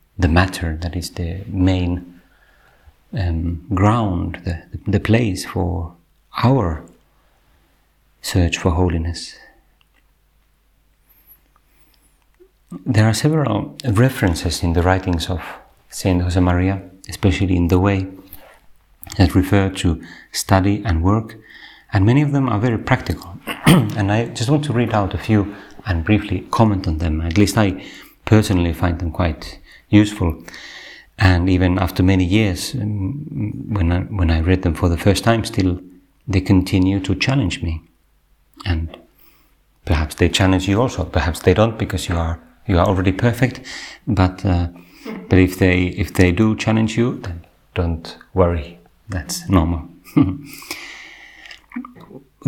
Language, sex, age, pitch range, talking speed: Finnish, male, 40-59, 90-105 Hz, 135 wpm